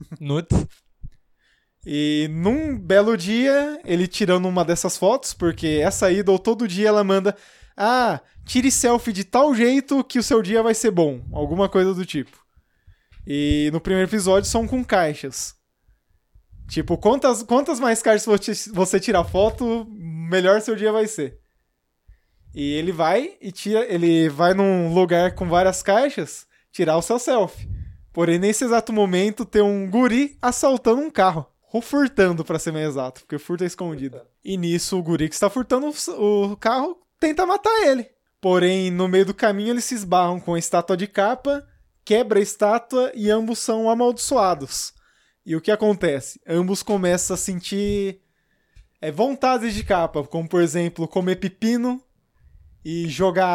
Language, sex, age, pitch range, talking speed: Portuguese, male, 20-39, 165-225 Hz, 160 wpm